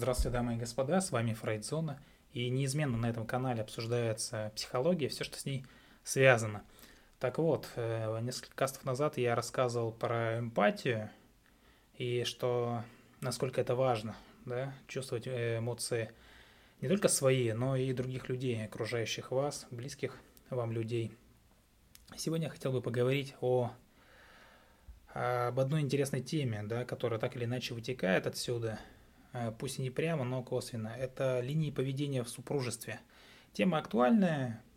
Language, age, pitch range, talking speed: Russian, 20-39, 115-135 Hz, 135 wpm